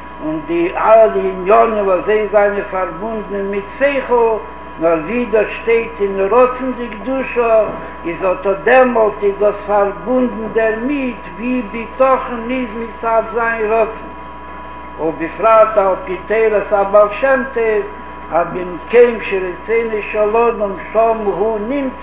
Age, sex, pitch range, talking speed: 60-79, male, 185-230 Hz, 125 wpm